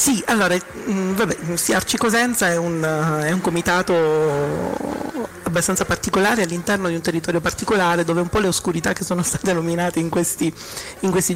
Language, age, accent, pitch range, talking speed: Italian, 30-49, native, 155-180 Hz, 165 wpm